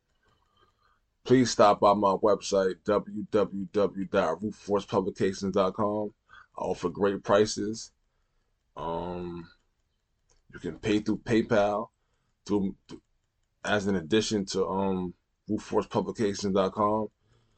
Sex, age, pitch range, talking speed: male, 20-39, 90-105 Hz, 80 wpm